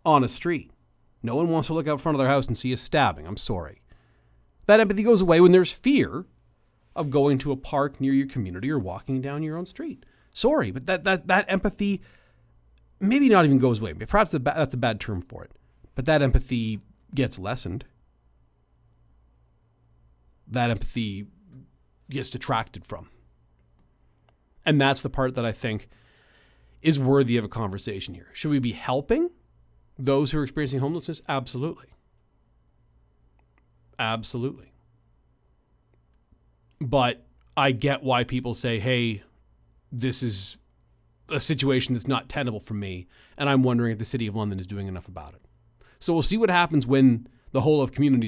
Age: 40-59